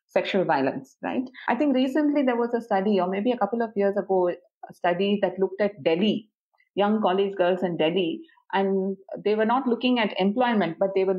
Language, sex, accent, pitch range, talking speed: English, female, Indian, 185-255 Hz, 205 wpm